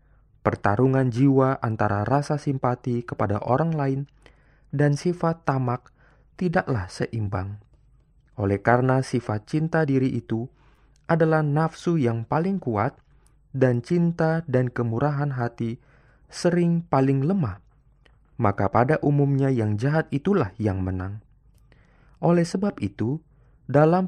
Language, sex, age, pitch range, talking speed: Indonesian, male, 20-39, 120-155 Hz, 110 wpm